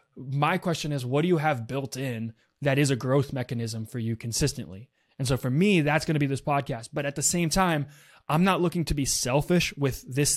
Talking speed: 225 wpm